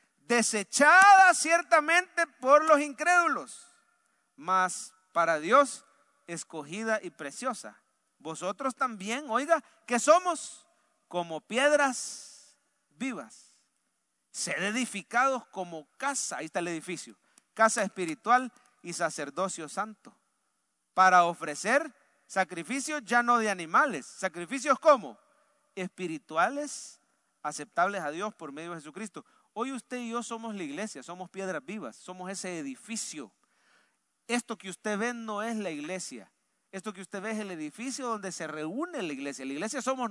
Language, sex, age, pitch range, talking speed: English, male, 40-59, 175-255 Hz, 125 wpm